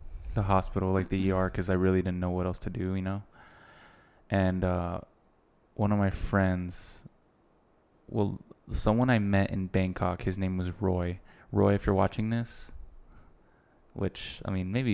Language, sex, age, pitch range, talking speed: English, male, 20-39, 90-100 Hz, 160 wpm